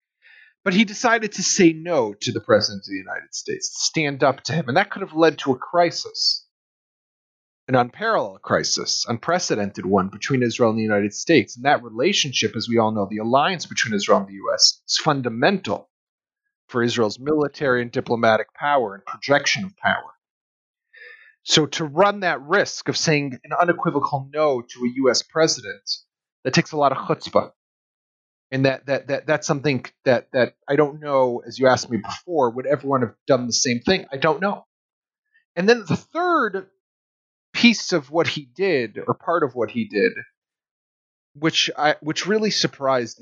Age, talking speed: 30-49, 180 wpm